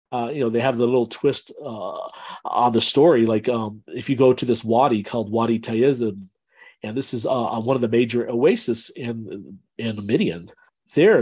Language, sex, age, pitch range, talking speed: English, male, 40-59, 110-125 Hz, 195 wpm